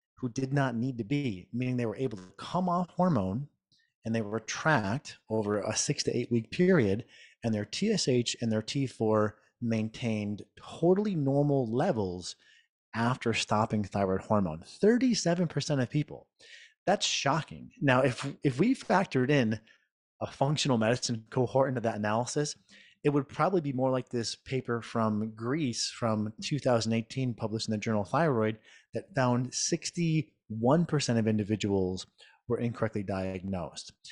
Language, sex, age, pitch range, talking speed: English, male, 30-49, 110-145 Hz, 145 wpm